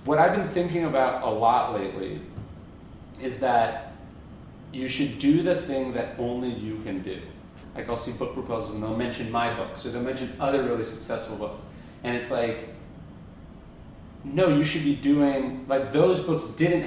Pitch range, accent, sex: 110-135 Hz, American, male